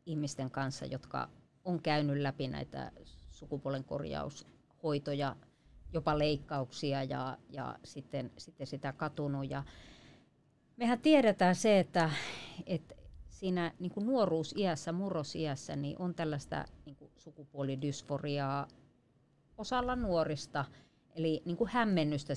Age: 30-49